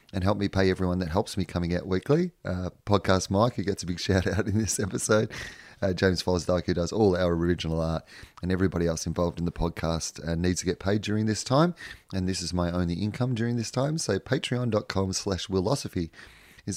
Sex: male